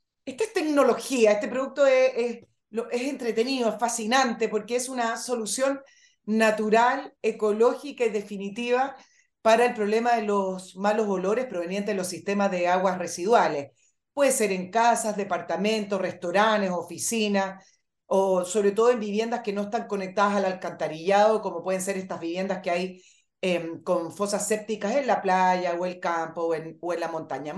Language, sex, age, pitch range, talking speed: Spanish, female, 40-59, 185-235 Hz, 160 wpm